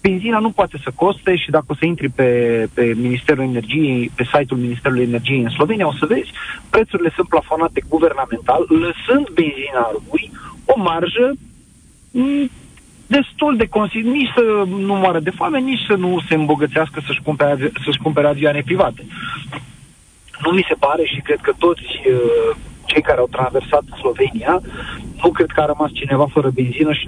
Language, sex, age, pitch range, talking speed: Romanian, male, 40-59, 135-190 Hz, 160 wpm